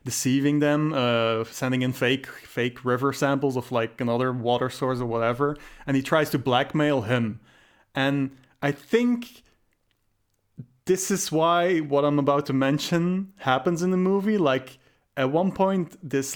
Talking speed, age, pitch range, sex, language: 155 wpm, 30-49, 125-155 Hz, male, English